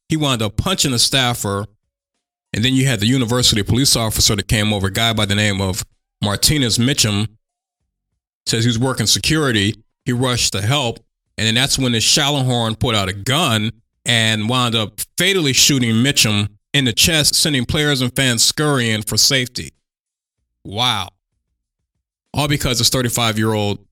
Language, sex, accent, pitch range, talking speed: English, male, American, 105-130 Hz, 165 wpm